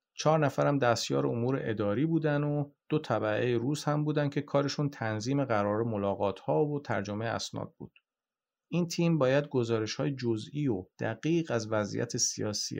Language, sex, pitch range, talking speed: Persian, male, 110-150 Hz, 155 wpm